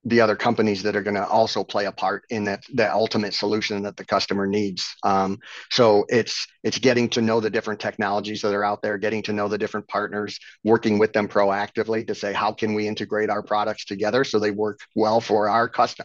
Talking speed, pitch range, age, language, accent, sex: 220 wpm, 105-110 Hz, 40-59, English, American, male